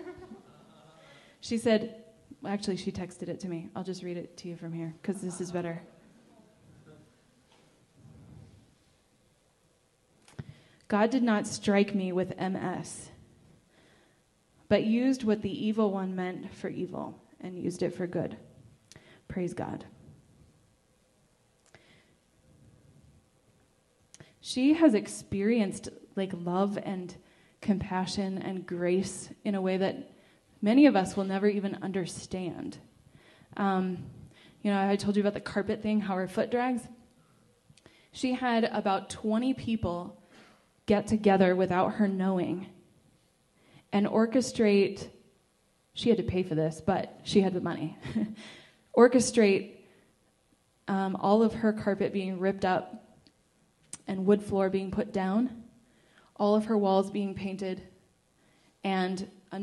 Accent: American